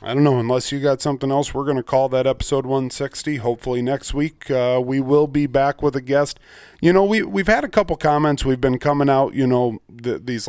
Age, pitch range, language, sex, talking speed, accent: 30-49, 120-145 Hz, English, male, 240 wpm, American